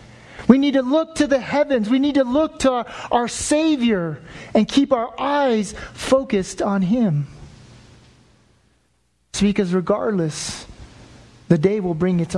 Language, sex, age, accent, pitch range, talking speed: English, male, 40-59, American, 170-235 Hz, 145 wpm